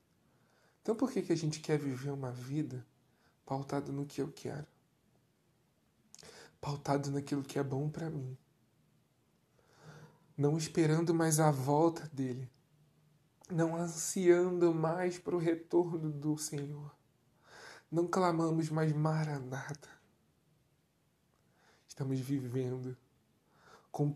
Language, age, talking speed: Portuguese, 20-39, 110 wpm